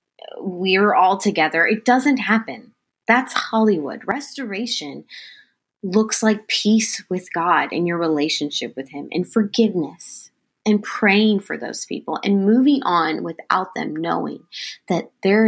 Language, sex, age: English, female, 20-39